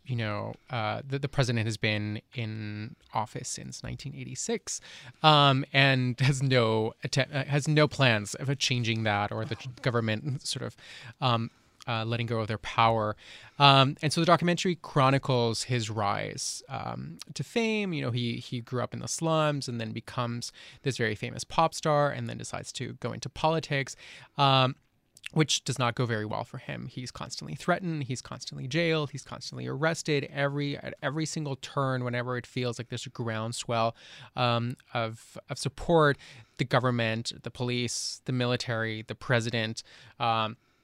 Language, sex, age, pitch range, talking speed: English, male, 20-39, 115-140 Hz, 170 wpm